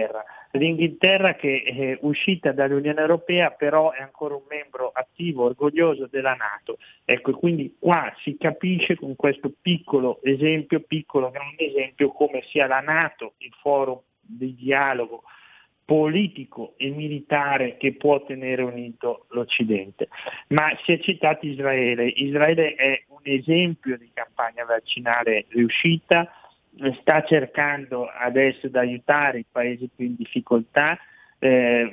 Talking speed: 125 wpm